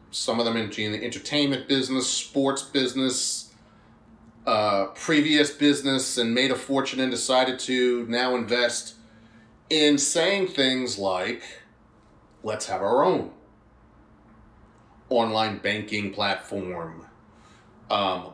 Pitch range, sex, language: 110-130 Hz, male, English